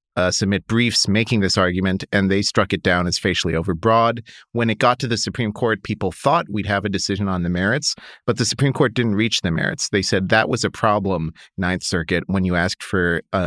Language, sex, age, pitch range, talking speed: English, male, 40-59, 90-110 Hz, 225 wpm